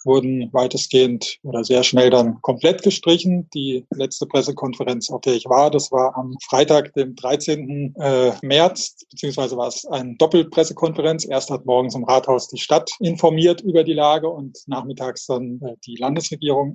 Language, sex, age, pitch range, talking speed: German, male, 20-39, 130-160 Hz, 155 wpm